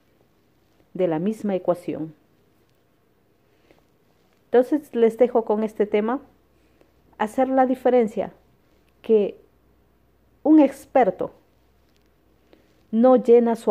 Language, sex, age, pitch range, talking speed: Spanish, female, 40-59, 180-230 Hz, 85 wpm